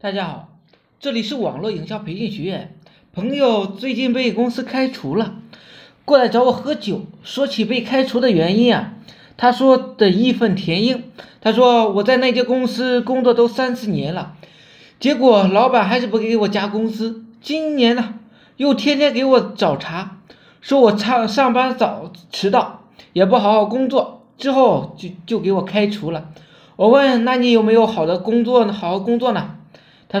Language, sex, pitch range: Chinese, male, 200-255 Hz